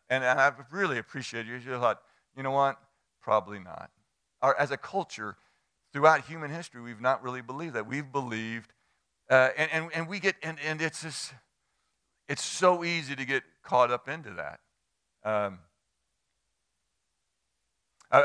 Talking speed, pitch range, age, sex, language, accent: 160 wpm, 115-140 Hz, 50-69, male, English, American